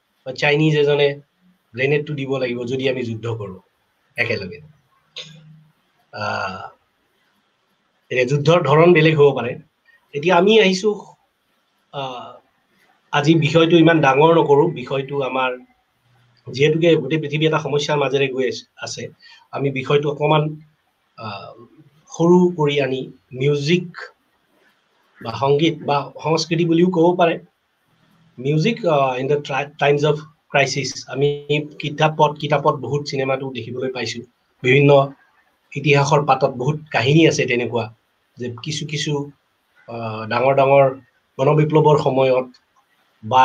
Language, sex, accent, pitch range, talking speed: English, male, Indian, 130-155 Hz, 90 wpm